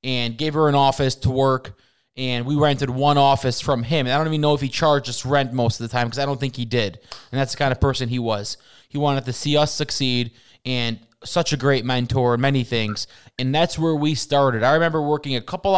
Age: 20-39